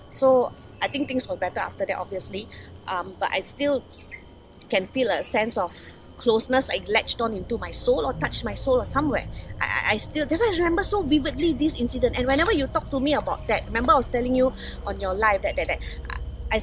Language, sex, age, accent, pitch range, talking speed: English, female, 20-39, Malaysian, 225-295 Hz, 220 wpm